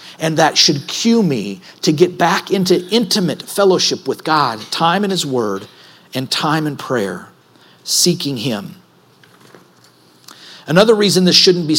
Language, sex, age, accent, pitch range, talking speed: English, male, 50-69, American, 145-185 Hz, 145 wpm